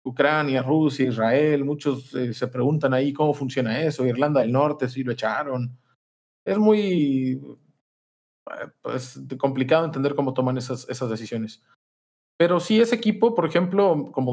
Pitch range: 125-150 Hz